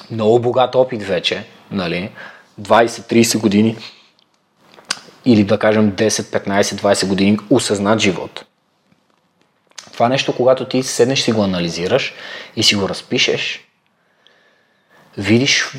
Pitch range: 100-125 Hz